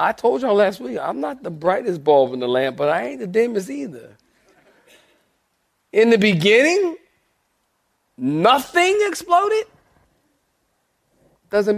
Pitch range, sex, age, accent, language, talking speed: 135-170 Hz, male, 40-59, American, English, 125 wpm